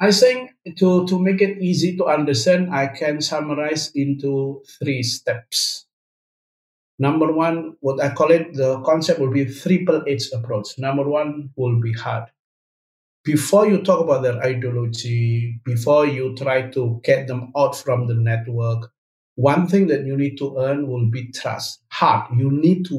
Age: 50-69